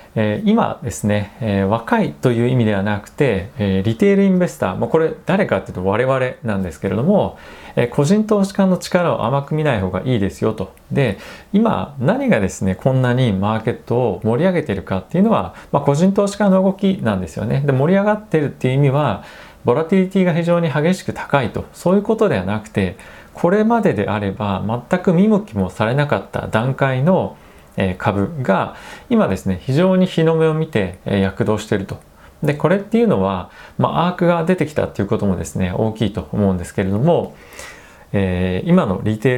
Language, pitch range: Japanese, 100-170 Hz